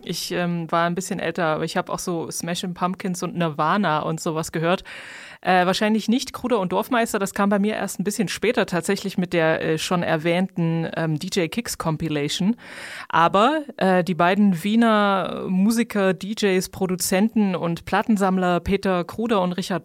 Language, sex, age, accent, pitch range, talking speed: German, female, 20-39, German, 175-205 Hz, 165 wpm